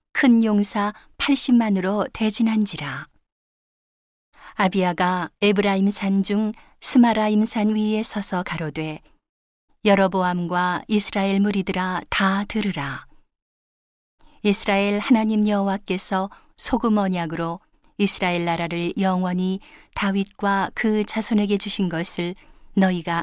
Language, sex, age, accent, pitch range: Korean, female, 40-59, native, 180-210 Hz